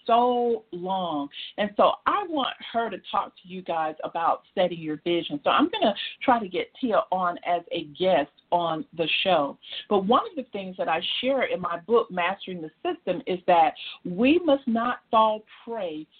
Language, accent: English, American